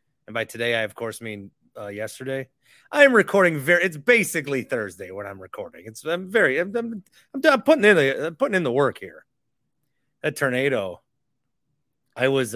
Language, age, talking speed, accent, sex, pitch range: English, 30-49, 185 wpm, American, male, 130-155 Hz